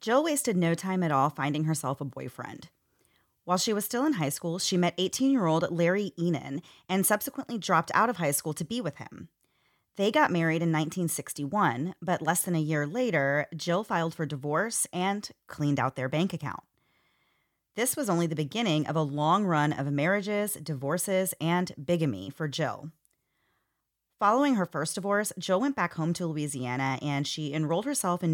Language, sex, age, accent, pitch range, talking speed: English, female, 30-49, American, 145-185 Hz, 180 wpm